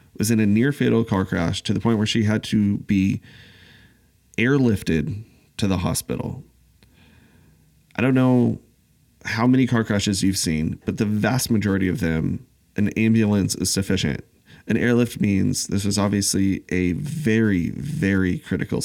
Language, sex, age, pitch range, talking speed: English, male, 30-49, 95-120 Hz, 155 wpm